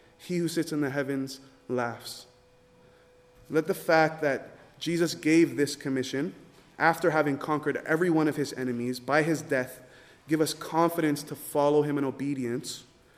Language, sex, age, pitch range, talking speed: English, male, 20-39, 130-160 Hz, 155 wpm